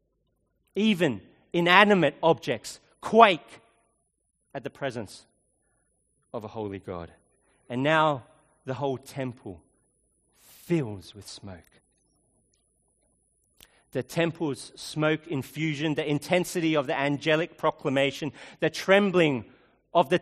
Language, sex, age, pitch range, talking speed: English, male, 40-59, 130-185 Hz, 100 wpm